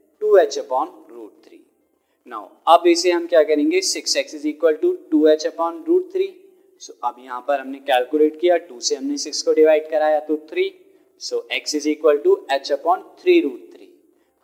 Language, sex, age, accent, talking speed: Hindi, male, 20-39, native, 185 wpm